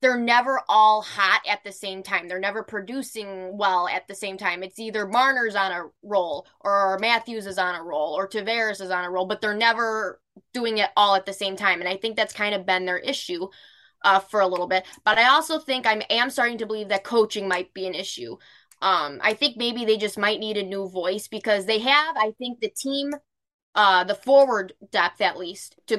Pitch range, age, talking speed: 195-230 Hz, 10-29, 225 wpm